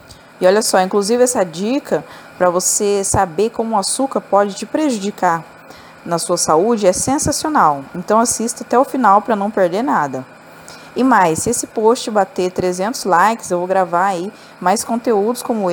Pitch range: 190-245 Hz